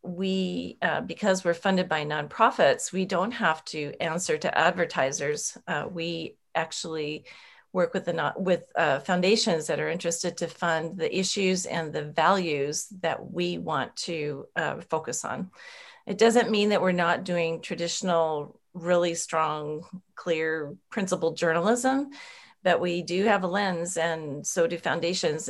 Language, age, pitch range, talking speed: English, 40-59, 165-205 Hz, 150 wpm